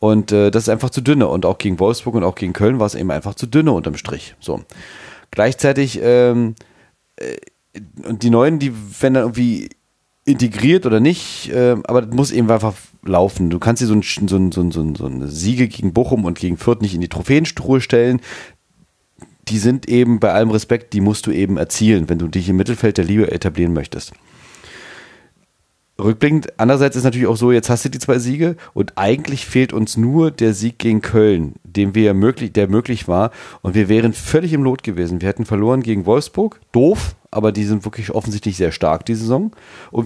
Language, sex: German, male